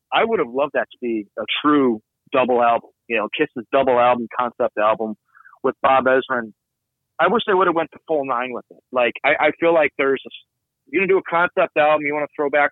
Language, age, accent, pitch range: English, 30-49, American, 115-150 Hz